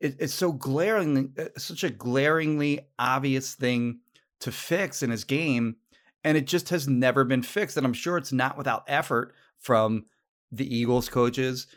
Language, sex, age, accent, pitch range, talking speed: English, male, 30-49, American, 110-150 Hz, 160 wpm